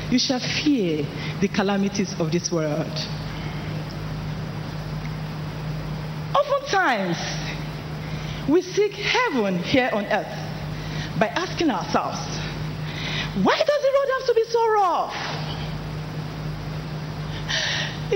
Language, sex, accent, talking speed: English, female, Nigerian, 90 wpm